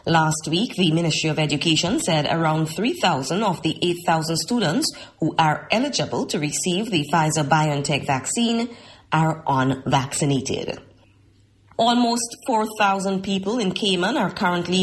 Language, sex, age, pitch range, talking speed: English, female, 30-49, 150-195 Hz, 120 wpm